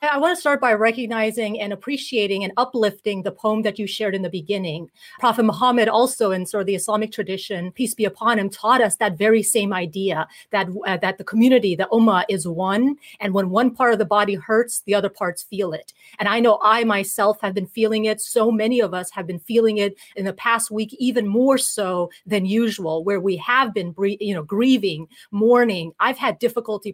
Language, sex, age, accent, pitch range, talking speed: English, female, 30-49, American, 195-235 Hz, 215 wpm